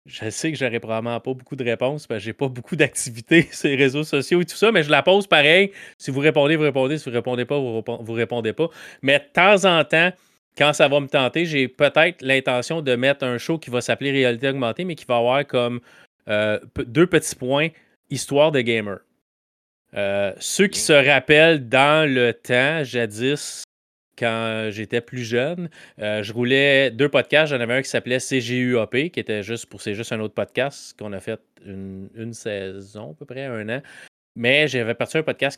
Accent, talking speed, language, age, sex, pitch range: Canadian, 215 wpm, French, 30-49, male, 110-140 Hz